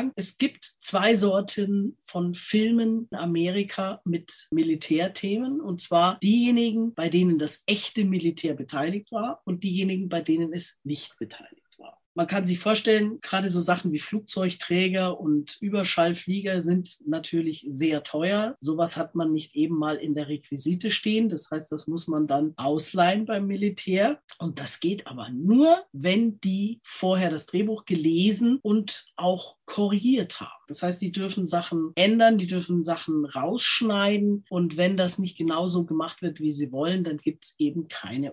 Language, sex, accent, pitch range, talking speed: German, female, German, 160-200 Hz, 160 wpm